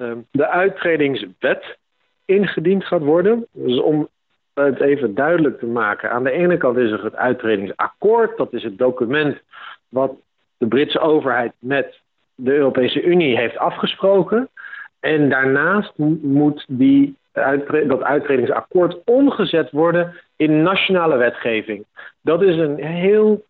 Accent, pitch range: Dutch, 135-180 Hz